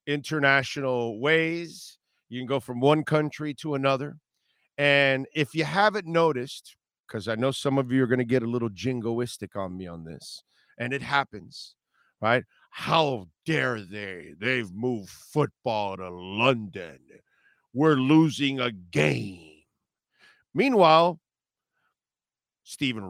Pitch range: 120-165 Hz